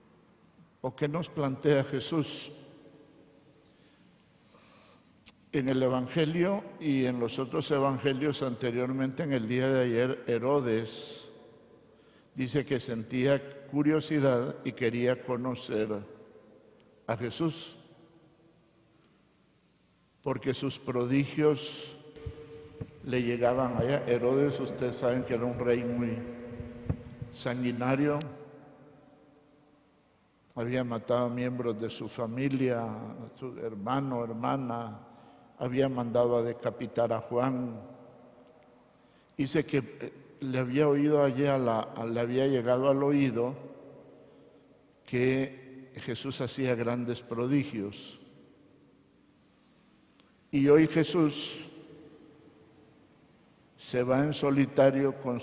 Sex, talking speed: male, 95 wpm